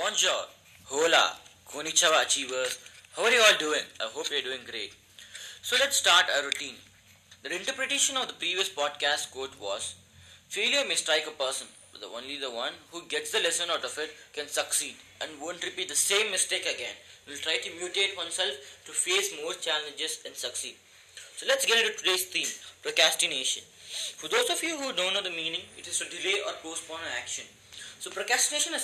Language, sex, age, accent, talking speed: English, male, 20-39, Indian, 190 wpm